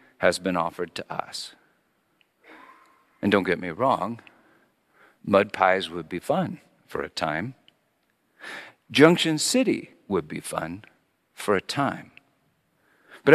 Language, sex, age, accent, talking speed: English, male, 50-69, American, 120 wpm